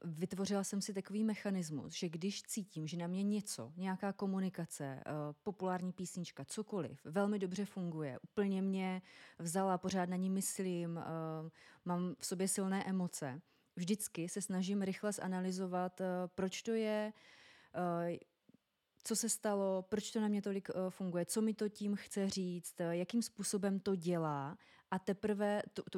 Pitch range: 175-195 Hz